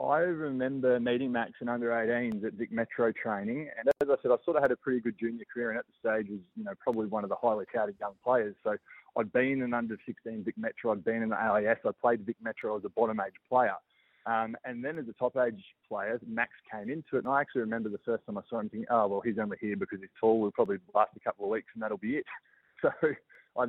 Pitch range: 110-125 Hz